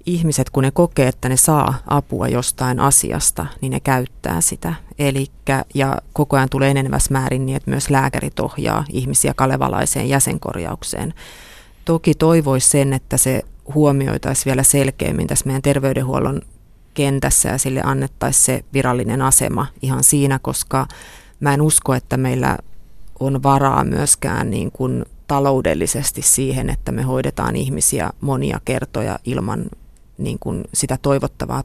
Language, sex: Finnish, female